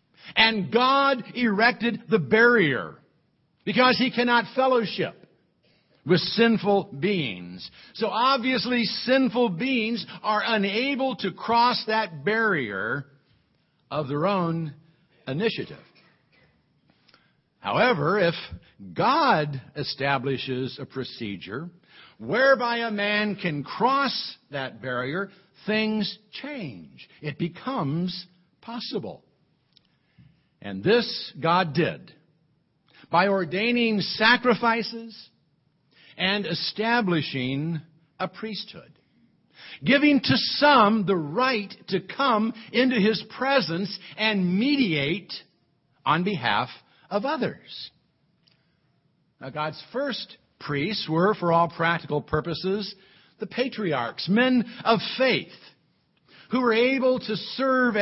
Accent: American